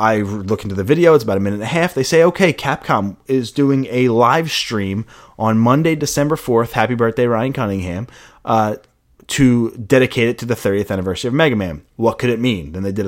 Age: 30-49